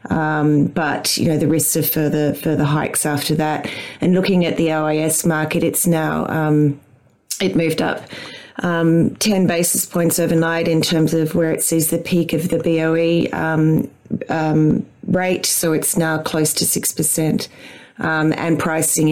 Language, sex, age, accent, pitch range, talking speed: English, female, 30-49, Australian, 155-170 Hz, 165 wpm